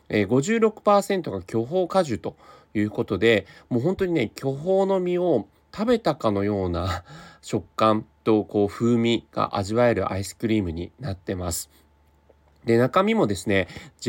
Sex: male